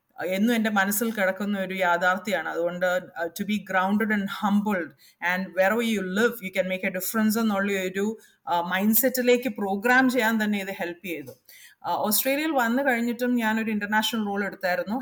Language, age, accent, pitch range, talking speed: Malayalam, 30-49, native, 190-225 Hz, 150 wpm